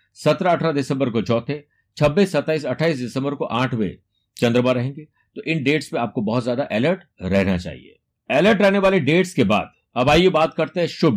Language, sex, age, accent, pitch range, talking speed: Hindi, male, 60-79, native, 115-155 Hz, 175 wpm